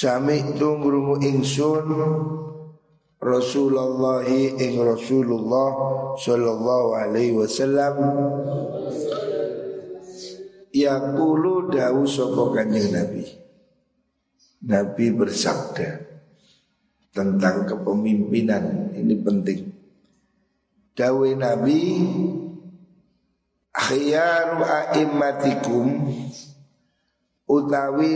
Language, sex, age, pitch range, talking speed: Indonesian, male, 60-79, 125-165 Hz, 55 wpm